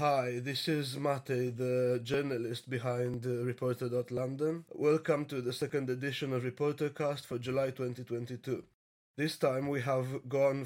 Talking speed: 135 wpm